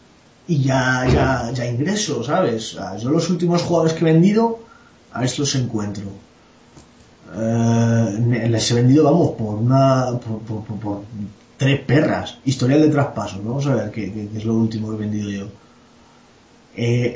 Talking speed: 165 wpm